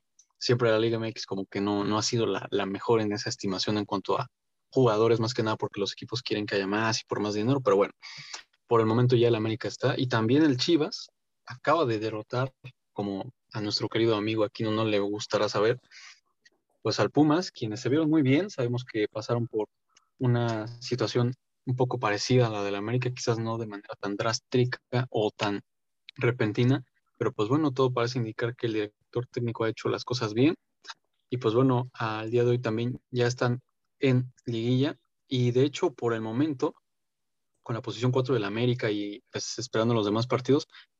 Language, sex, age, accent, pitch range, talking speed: Spanish, male, 20-39, Mexican, 110-130 Hz, 200 wpm